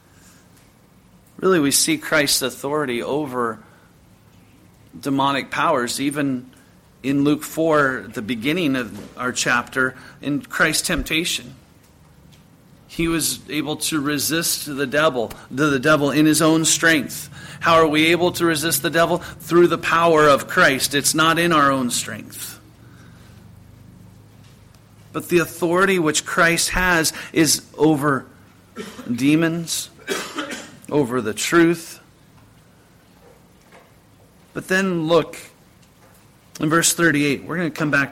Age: 40-59